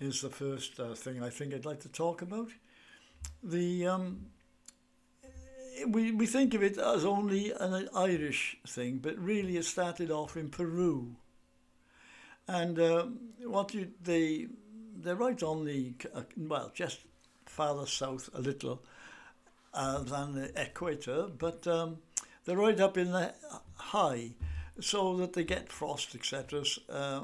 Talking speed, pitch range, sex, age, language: 145 wpm, 140-190 Hz, male, 60-79, English